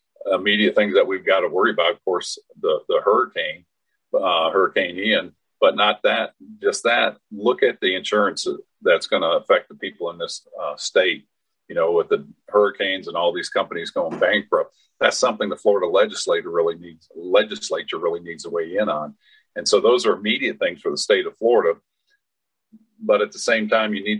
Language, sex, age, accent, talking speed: English, male, 50-69, American, 195 wpm